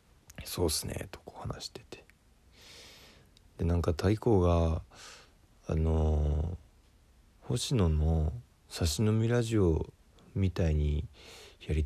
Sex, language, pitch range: male, Japanese, 80-95 Hz